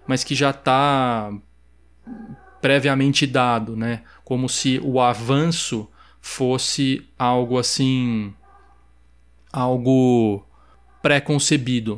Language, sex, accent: Portuguese, male, Brazilian